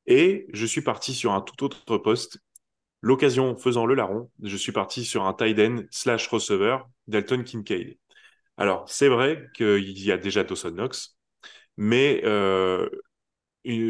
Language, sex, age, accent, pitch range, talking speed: French, male, 20-39, French, 95-120 Hz, 155 wpm